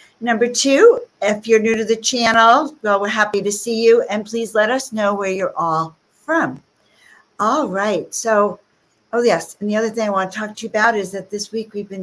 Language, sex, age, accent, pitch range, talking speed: English, female, 60-79, American, 180-230 Hz, 225 wpm